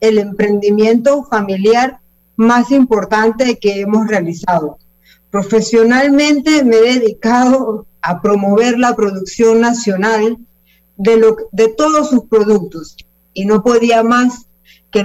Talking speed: 110 wpm